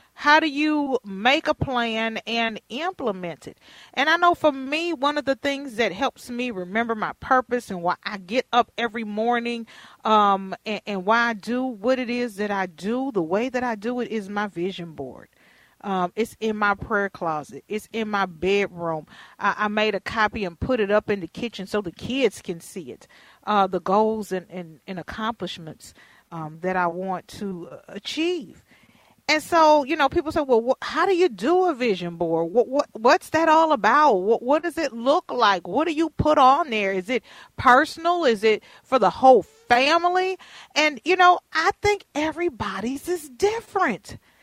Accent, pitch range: American, 205-290 Hz